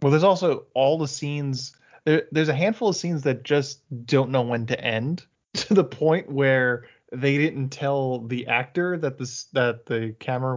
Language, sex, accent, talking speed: English, male, American, 180 wpm